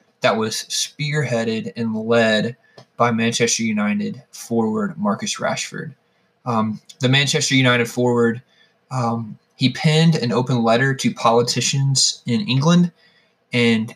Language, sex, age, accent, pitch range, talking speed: English, male, 20-39, American, 115-145 Hz, 115 wpm